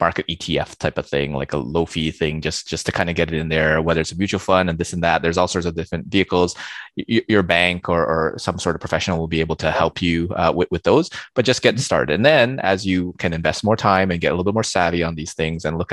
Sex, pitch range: male, 80-95 Hz